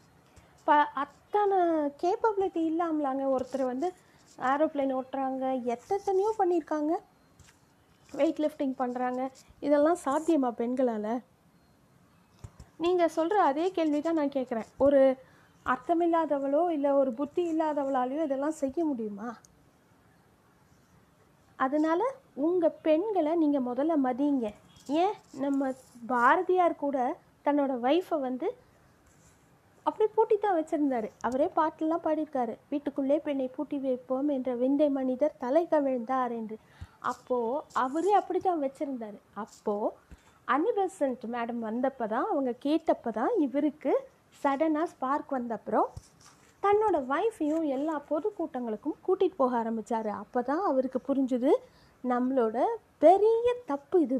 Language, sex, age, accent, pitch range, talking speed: Tamil, female, 30-49, native, 260-330 Hz, 105 wpm